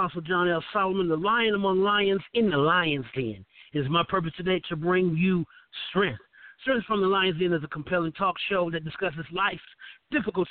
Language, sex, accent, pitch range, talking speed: English, male, American, 160-205 Hz, 195 wpm